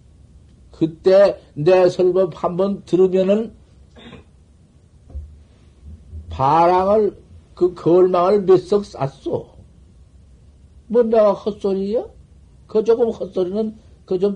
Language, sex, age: Korean, male, 50-69